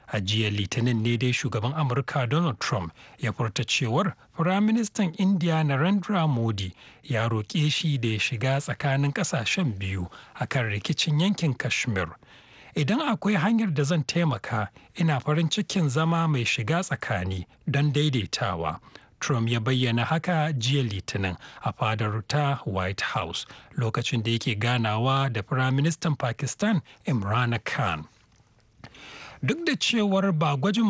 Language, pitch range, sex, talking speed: English, 115-160 Hz, male, 115 wpm